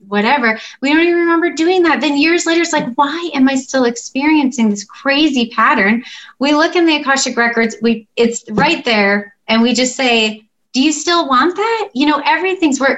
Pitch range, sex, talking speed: 220-280 Hz, female, 200 wpm